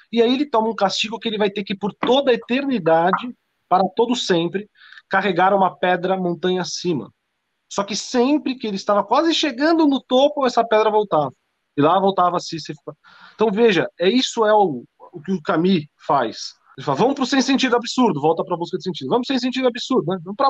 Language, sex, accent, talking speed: Portuguese, male, Brazilian, 210 wpm